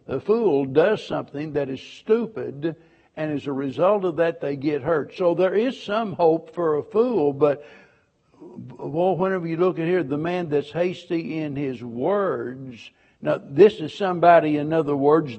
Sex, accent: male, American